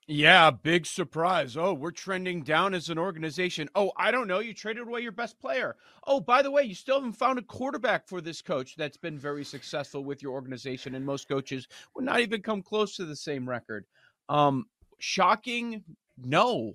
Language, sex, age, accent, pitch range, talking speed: English, male, 30-49, American, 125-160 Hz, 195 wpm